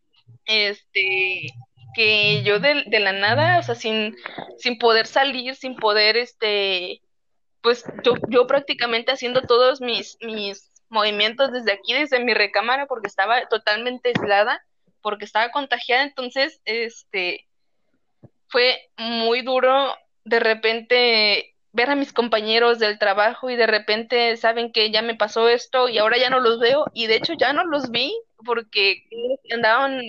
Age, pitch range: 20-39, 210-255 Hz